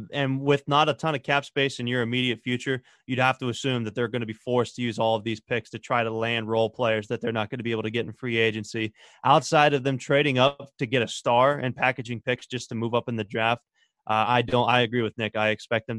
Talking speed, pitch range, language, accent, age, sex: 280 wpm, 115-135 Hz, English, American, 30-49, male